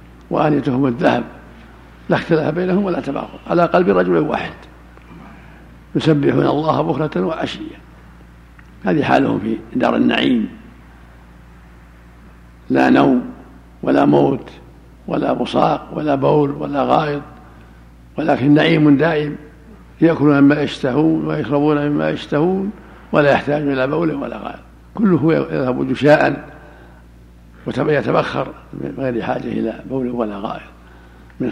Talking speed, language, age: 110 wpm, Arabic, 60-79